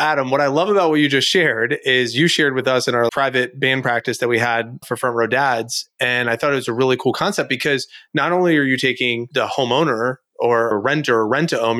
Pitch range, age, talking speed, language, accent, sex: 110-130 Hz, 30-49, 250 wpm, English, American, male